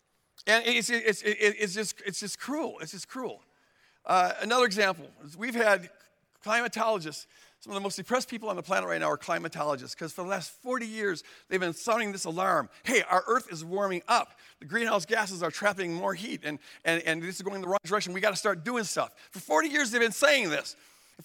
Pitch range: 200-255 Hz